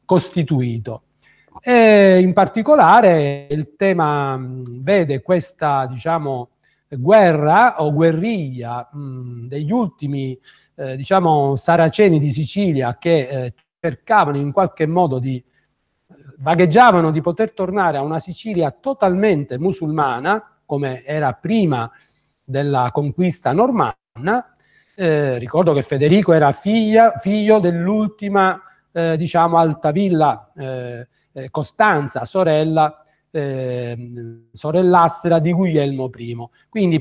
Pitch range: 135-190 Hz